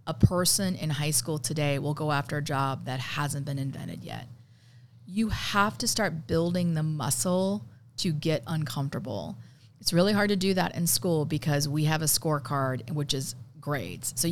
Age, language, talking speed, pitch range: 40-59, English, 180 wpm, 130-170 Hz